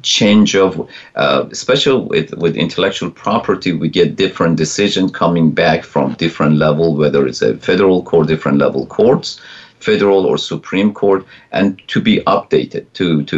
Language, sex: English, male